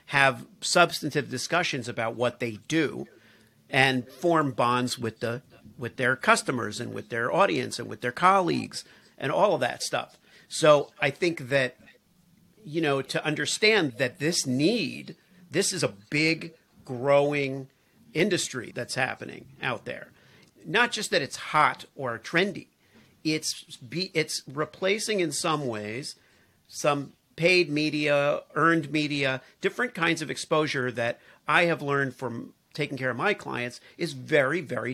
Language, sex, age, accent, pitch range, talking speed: English, male, 50-69, American, 120-160 Hz, 145 wpm